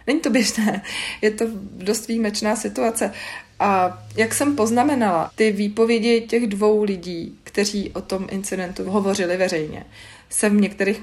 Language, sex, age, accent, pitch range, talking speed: Czech, female, 40-59, native, 180-210 Hz, 140 wpm